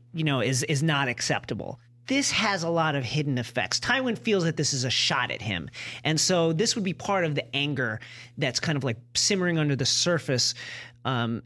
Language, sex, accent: English, male, American